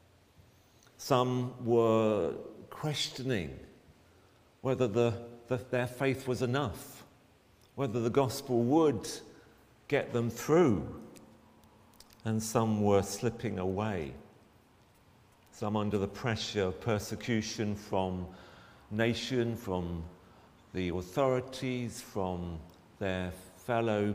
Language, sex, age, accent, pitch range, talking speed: English, male, 50-69, British, 100-130 Hz, 90 wpm